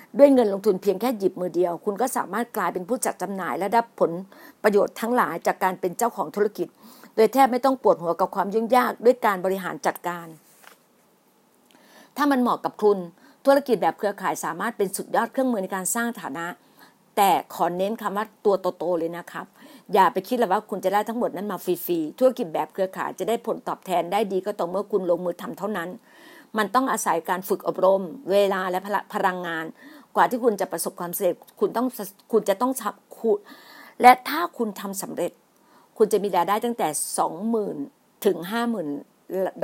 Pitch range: 180-235 Hz